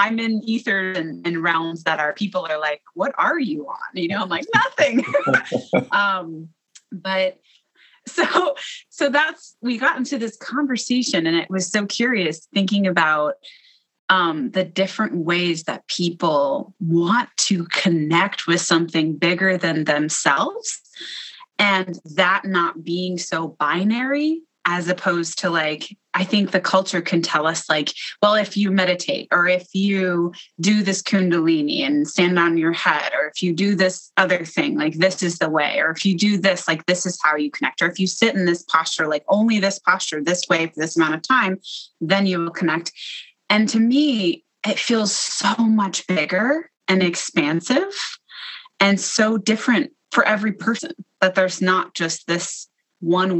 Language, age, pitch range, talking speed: English, 20-39, 170-215 Hz, 170 wpm